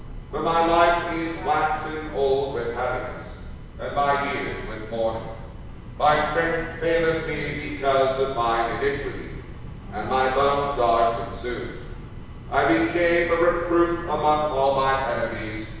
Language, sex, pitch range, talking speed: English, male, 115-155 Hz, 130 wpm